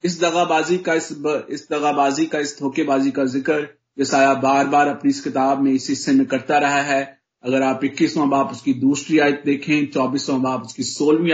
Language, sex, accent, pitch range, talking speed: Hindi, male, native, 140-195 Hz, 190 wpm